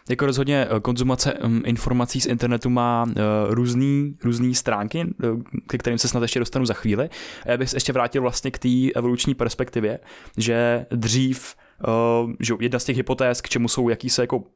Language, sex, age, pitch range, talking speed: Czech, male, 20-39, 120-130 Hz, 165 wpm